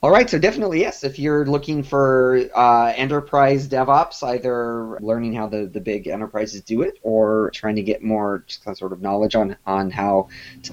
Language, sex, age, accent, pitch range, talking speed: English, male, 30-49, American, 110-140 Hz, 200 wpm